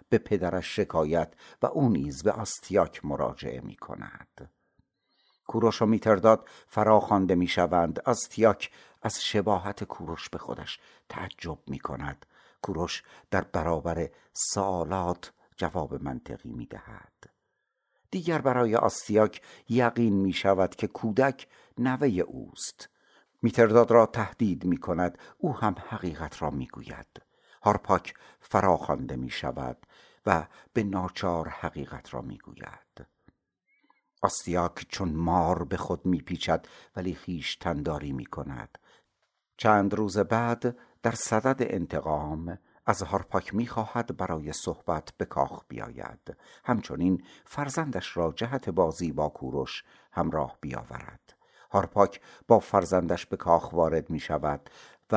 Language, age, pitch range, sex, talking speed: Persian, 60-79, 85-115 Hz, male, 115 wpm